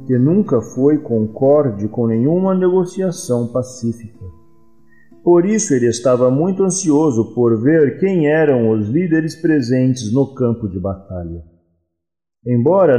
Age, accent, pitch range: 40-59, Brazilian, 115-185 Hz